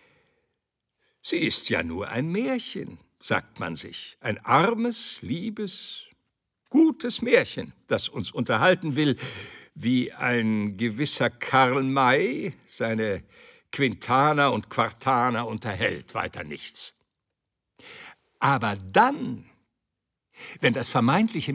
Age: 60-79